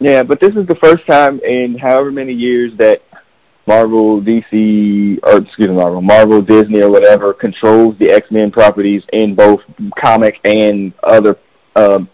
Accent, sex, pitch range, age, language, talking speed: American, male, 105-125 Hz, 30-49, English, 165 wpm